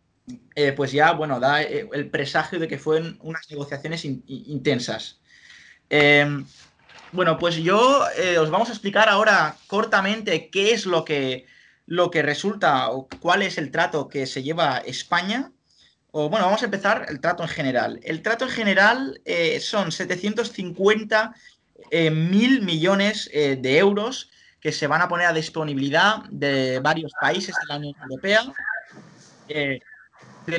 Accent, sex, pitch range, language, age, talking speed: Spanish, male, 150-200 Hz, Spanish, 20-39, 155 wpm